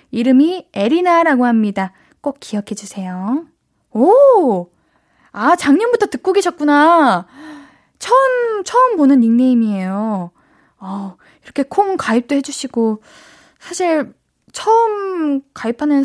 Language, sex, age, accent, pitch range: Korean, female, 20-39, native, 225-310 Hz